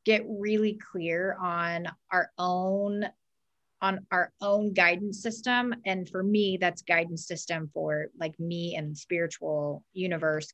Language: English